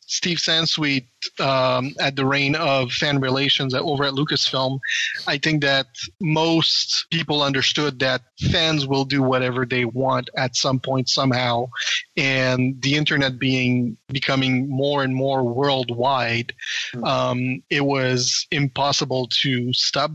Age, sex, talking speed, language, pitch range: 30-49, male, 135 wpm, English, 125-150 Hz